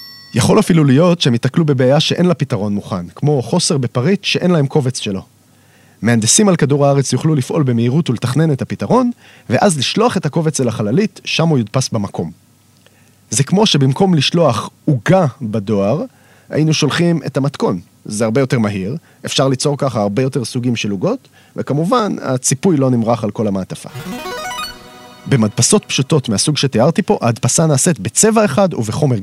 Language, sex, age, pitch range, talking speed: Hebrew, male, 30-49, 120-160 Hz, 155 wpm